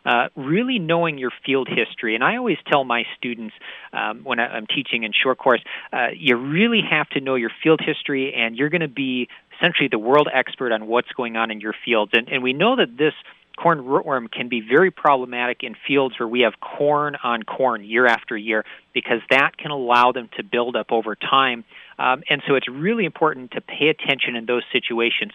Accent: American